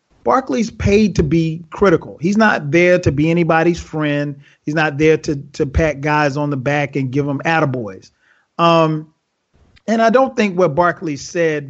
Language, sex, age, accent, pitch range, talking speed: English, male, 30-49, American, 150-185 Hz, 175 wpm